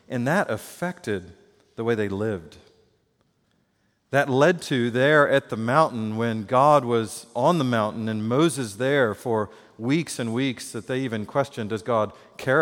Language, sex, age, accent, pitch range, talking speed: English, male, 40-59, American, 110-135 Hz, 160 wpm